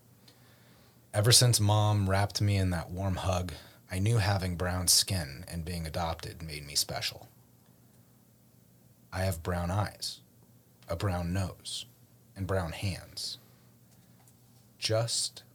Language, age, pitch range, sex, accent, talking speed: English, 30-49, 85-120 Hz, male, American, 120 wpm